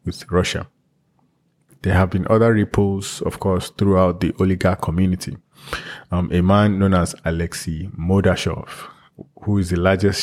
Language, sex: English, male